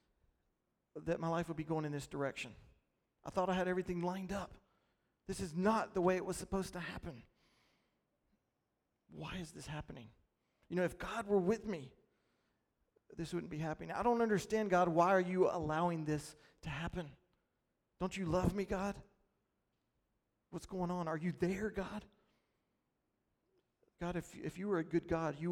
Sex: male